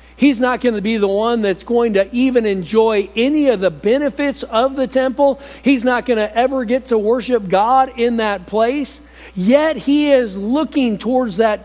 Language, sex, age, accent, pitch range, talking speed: English, male, 50-69, American, 180-240 Hz, 190 wpm